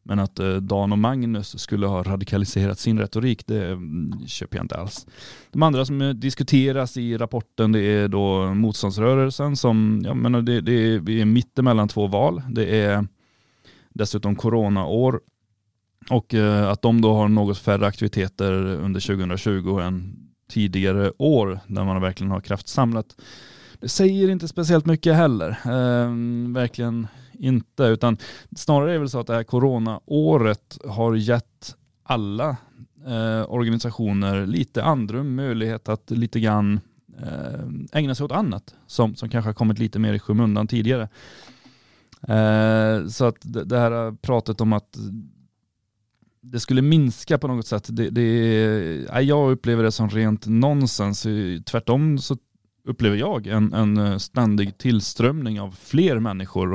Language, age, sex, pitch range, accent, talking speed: Swedish, 20-39, male, 105-125 Hz, native, 145 wpm